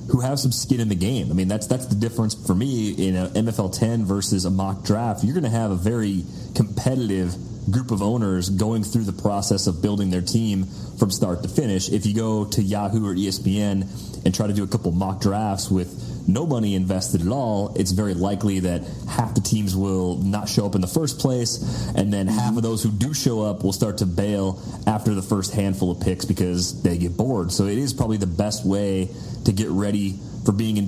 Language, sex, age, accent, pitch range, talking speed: English, male, 30-49, American, 95-115 Hz, 225 wpm